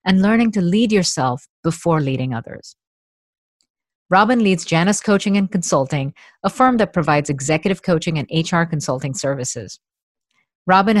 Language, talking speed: English, 135 wpm